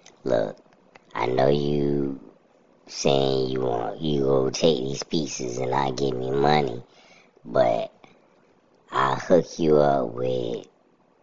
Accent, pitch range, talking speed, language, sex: American, 65-75 Hz, 125 wpm, English, male